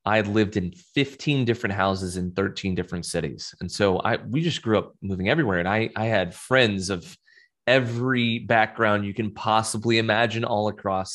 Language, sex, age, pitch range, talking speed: English, male, 20-39, 95-120 Hz, 185 wpm